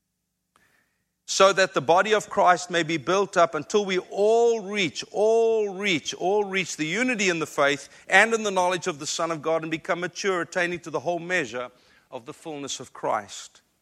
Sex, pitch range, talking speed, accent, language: male, 155-190 Hz, 195 wpm, South African, English